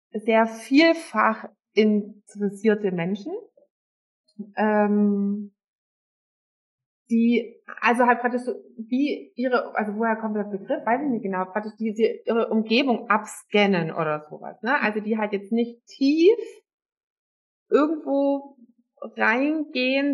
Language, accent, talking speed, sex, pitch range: German, German, 115 wpm, female, 215-265 Hz